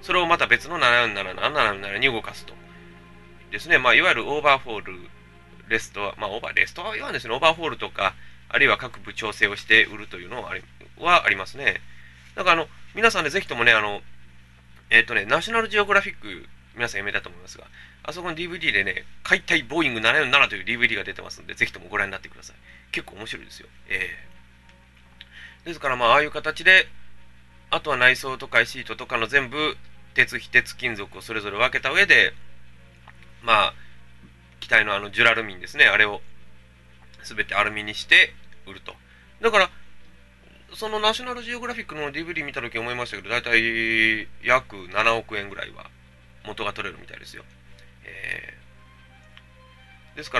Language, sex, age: Japanese, male, 20-39